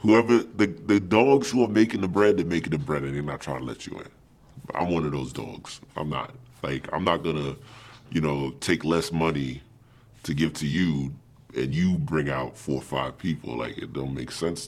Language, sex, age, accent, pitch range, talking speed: English, female, 40-59, American, 70-90 Hz, 220 wpm